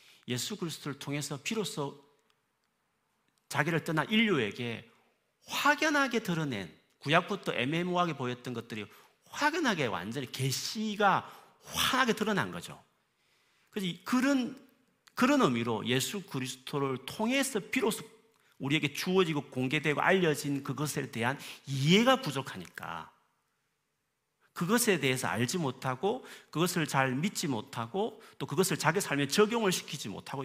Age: 40-59